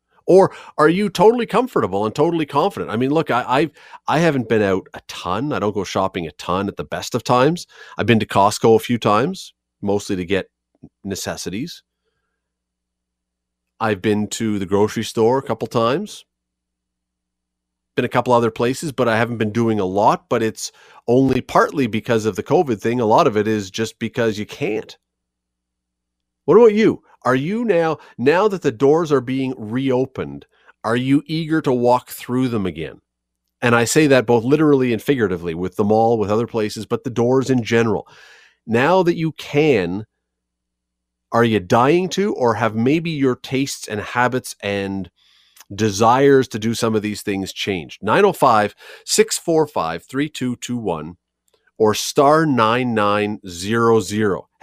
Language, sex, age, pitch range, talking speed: English, male, 40-59, 95-135 Hz, 165 wpm